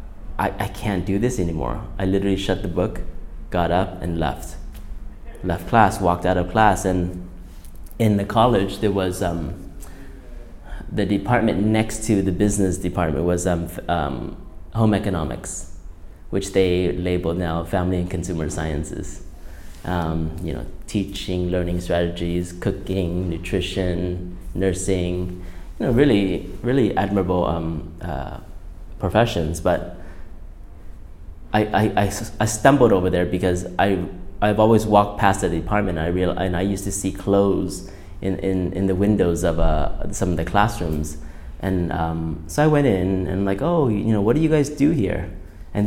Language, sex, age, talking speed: English, male, 30-49, 155 wpm